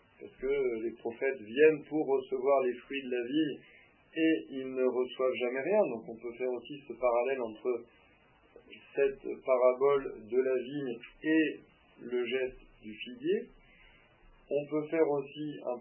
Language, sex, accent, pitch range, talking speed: French, male, French, 120-155 Hz, 155 wpm